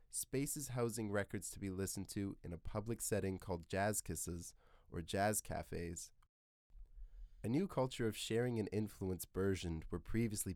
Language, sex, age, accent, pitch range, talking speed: English, male, 20-39, American, 90-110 Hz, 155 wpm